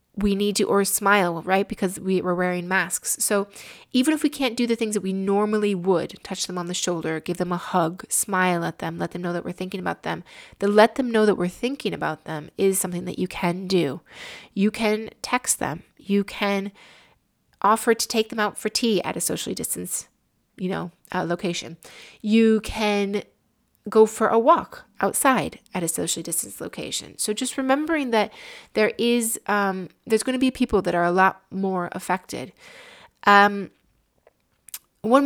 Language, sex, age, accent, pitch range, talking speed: English, female, 20-39, American, 185-220 Hz, 180 wpm